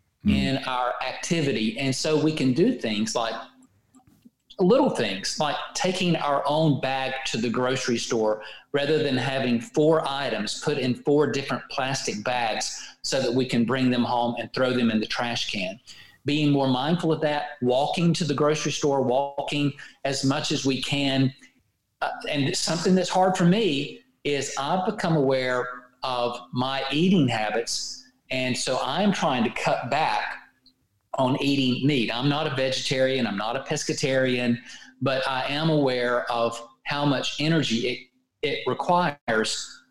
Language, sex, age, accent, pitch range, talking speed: English, male, 40-59, American, 125-155 Hz, 160 wpm